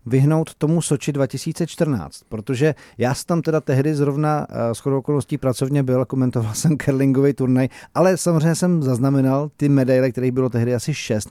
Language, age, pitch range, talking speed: Czech, 40-59, 125-145 Hz, 165 wpm